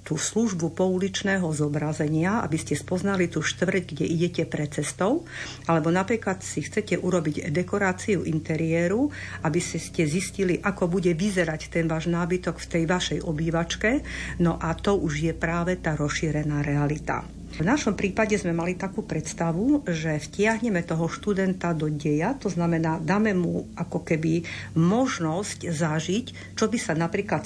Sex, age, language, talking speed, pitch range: female, 50-69, Slovak, 145 wpm, 160-195 Hz